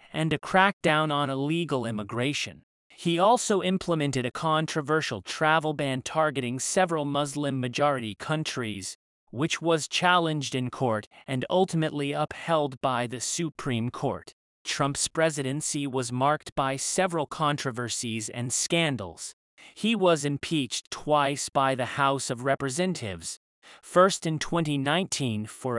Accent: American